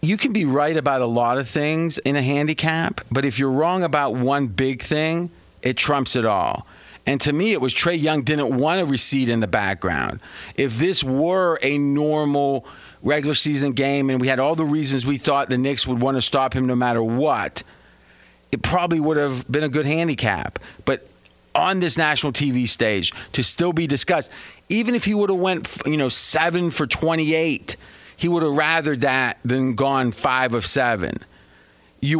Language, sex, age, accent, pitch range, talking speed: English, male, 40-59, American, 135-165 Hz, 195 wpm